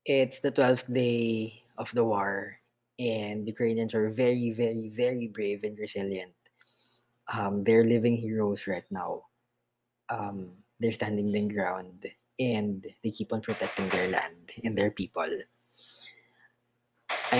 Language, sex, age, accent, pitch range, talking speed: Filipino, female, 20-39, native, 105-120 Hz, 130 wpm